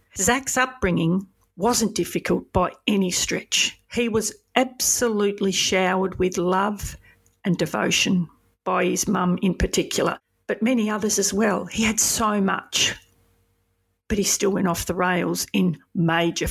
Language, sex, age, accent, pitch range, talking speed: English, female, 50-69, Australian, 175-210 Hz, 140 wpm